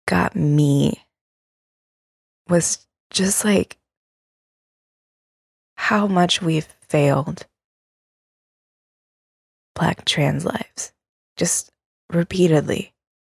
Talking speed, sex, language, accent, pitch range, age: 65 wpm, female, English, American, 155-185 Hz, 20-39